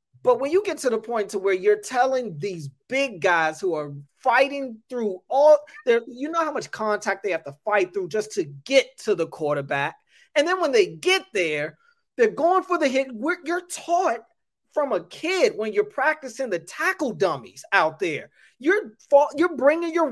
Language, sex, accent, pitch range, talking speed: English, male, American, 180-270 Hz, 195 wpm